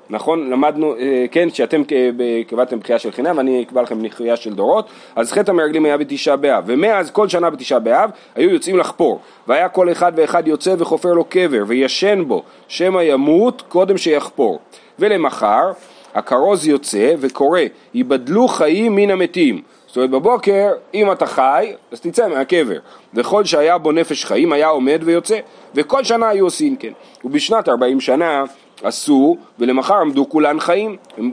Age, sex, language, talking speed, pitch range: 30-49, male, Hebrew, 155 wpm, 135-205 Hz